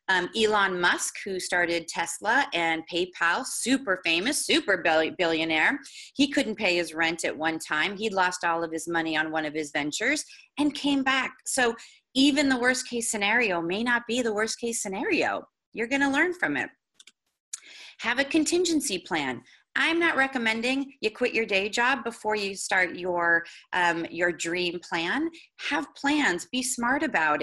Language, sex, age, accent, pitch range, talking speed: English, female, 30-49, American, 175-265 Hz, 170 wpm